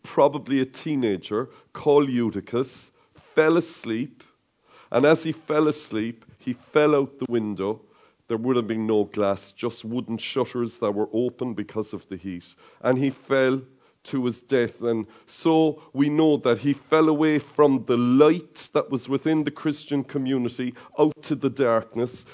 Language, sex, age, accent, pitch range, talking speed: English, male, 40-59, Irish, 130-165 Hz, 160 wpm